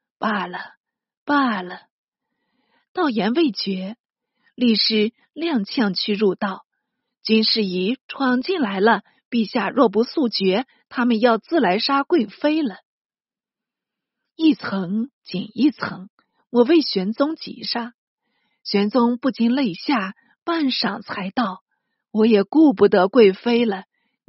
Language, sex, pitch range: Chinese, female, 210-270 Hz